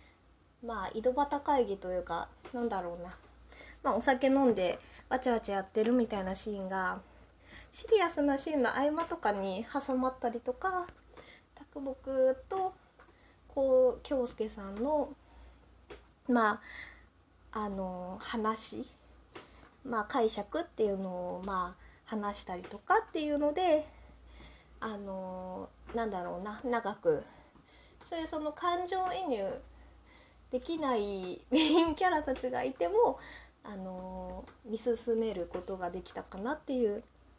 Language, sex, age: Japanese, female, 20-39